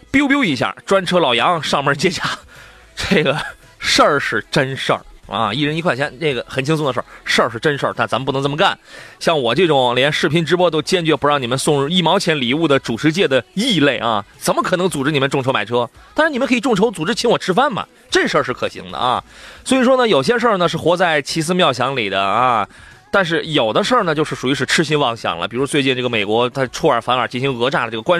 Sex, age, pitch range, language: male, 30-49, 135-180 Hz, Chinese